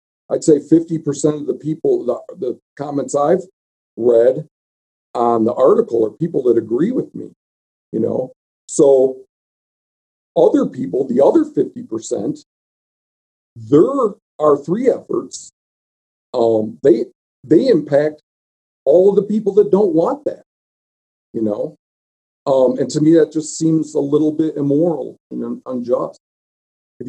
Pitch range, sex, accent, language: 105-155 Hz, male, American, English